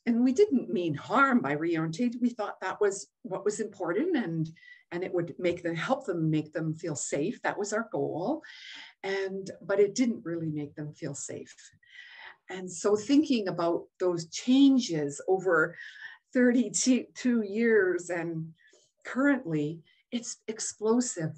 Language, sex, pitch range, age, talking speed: English, female, 170-220 Hz, 50-69, 145 wpm